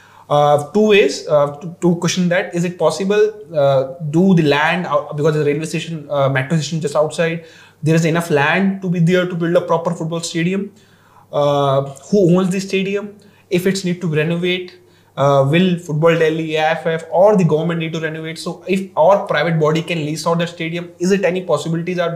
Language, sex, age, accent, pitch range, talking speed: English, male, 20-39, Indian, 150-175 Hz, 200 wpm